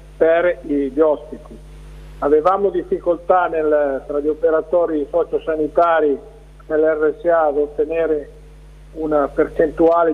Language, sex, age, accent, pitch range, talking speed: Italian, male, 50-69, native, 150-165 Hz, 90 wpm